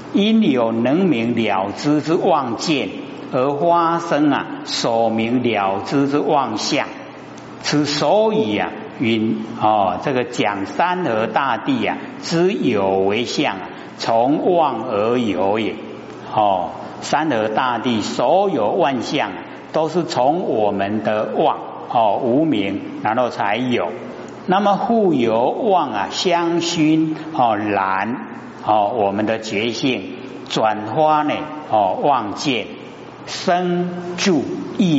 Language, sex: Chinese, male